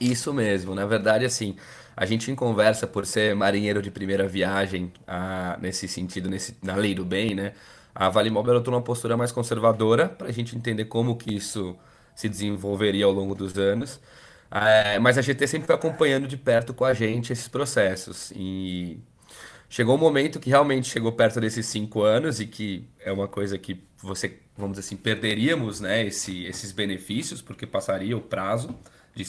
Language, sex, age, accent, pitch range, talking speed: Portuguese, male, 20-39, Brazilian, 100-120 Hz, 185 wpm